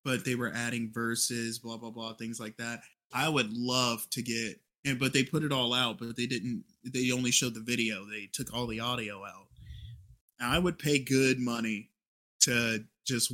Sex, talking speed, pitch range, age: male, 205 wpm, 110-130 Hz, 20-39